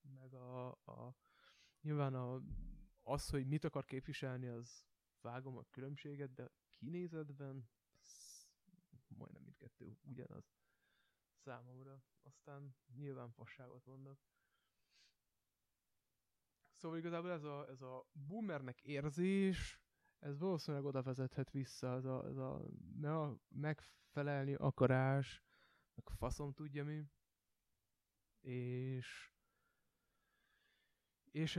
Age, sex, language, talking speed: 20-39, male, Hungarian, 95 wpm